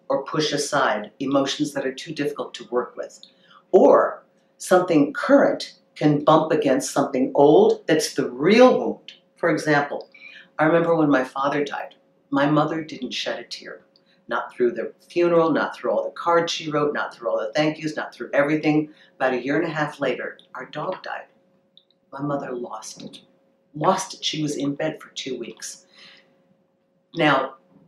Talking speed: 175 wpm